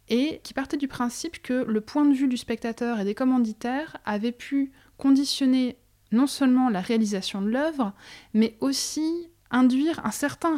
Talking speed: 165 wpm